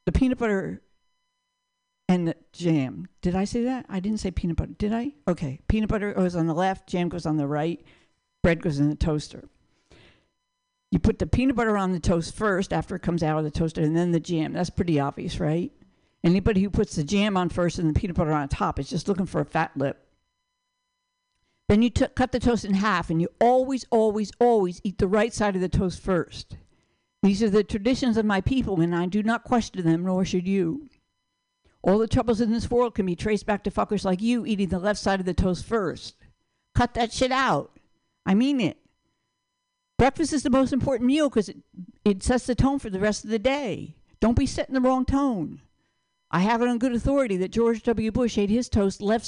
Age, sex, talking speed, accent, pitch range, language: 60-79, female, 220 wpm, American, 180-250 Hz, English